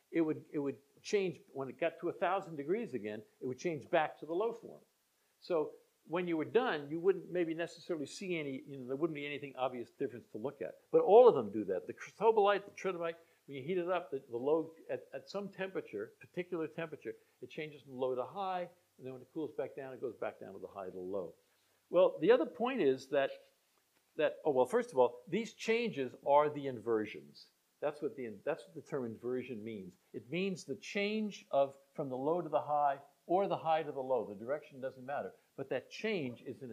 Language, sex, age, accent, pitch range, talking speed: English, male, 50-69, American, 135-200 Hz, 230 wpm